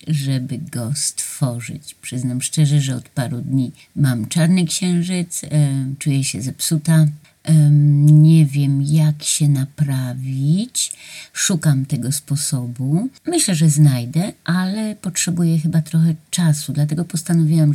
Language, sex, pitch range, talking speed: Polish, female, 140-170 Hz, 110 wpm